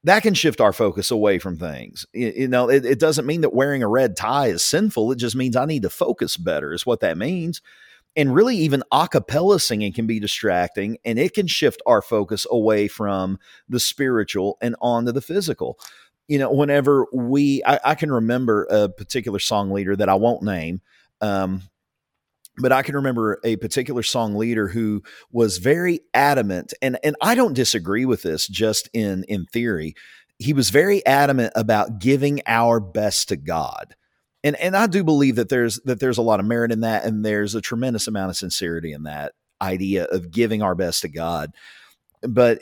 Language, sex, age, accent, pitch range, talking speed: English, male, 40-59, American, 100-130 Hz, 195 wpm